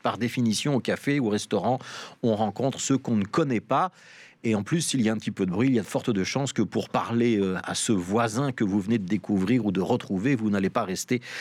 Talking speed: 265 wpm